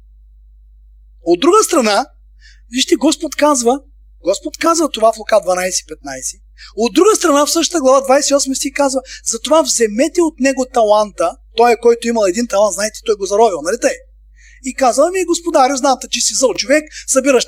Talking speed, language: 165 wpm, Bulgarian